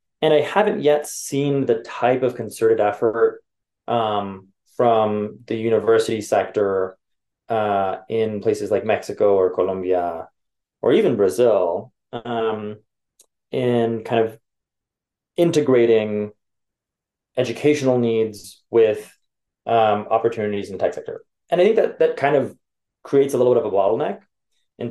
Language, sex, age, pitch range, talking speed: English, male, 20-39, 105-130 Hz, 130 wpm